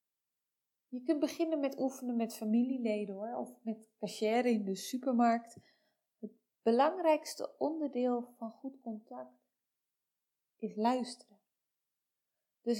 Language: Dutch